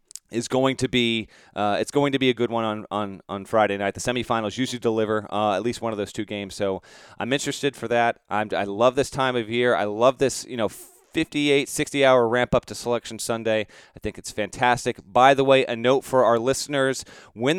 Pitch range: 120-150 Hz